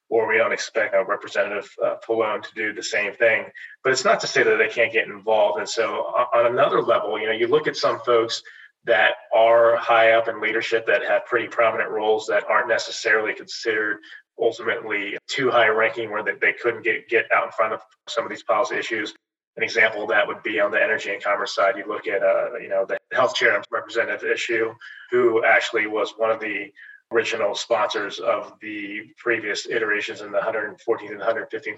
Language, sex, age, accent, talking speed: English, male, 30-49, American, 210 wpm